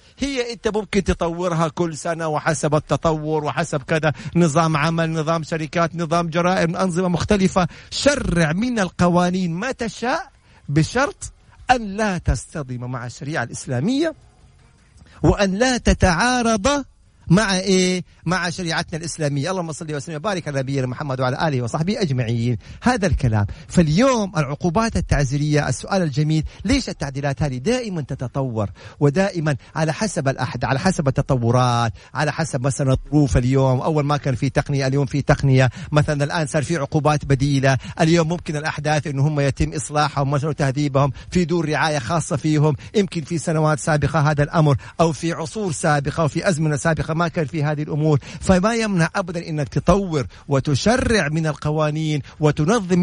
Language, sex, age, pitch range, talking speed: Arabic, male, 50-69, 145-180 Hz, 145 wpm